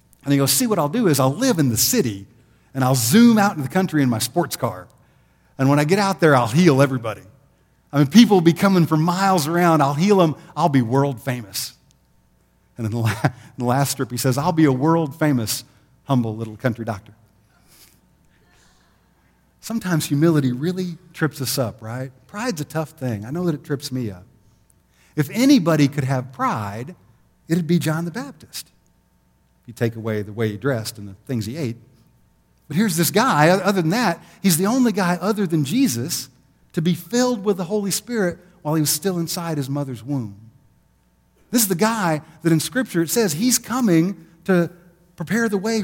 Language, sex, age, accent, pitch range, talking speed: English, male, 50-69, American, 125-180 Hz, 200 wpm